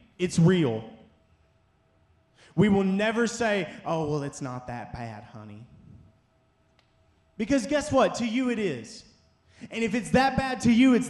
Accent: American